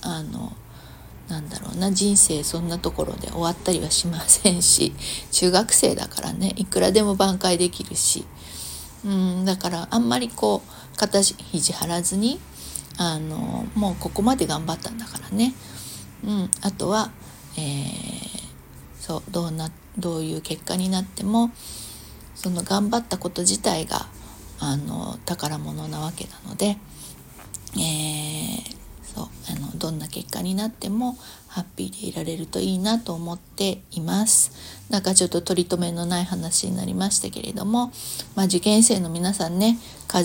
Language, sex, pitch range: Japanese, female, 165-205 Hz